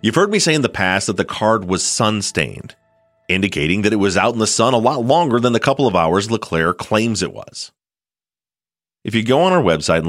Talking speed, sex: 230 wpm, male